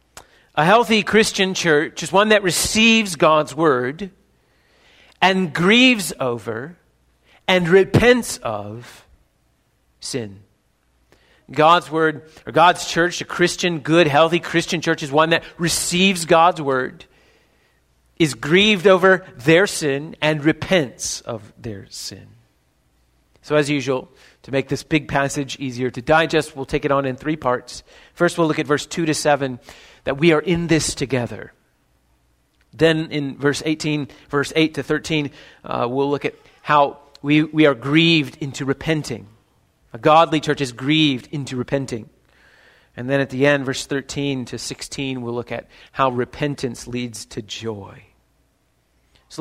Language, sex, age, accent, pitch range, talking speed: English, male, 40-59, American, 120-160 Hz, 145 wpm